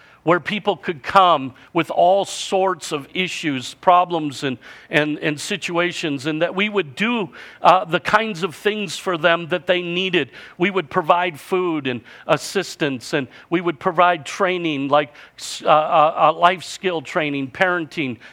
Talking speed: 155 wpm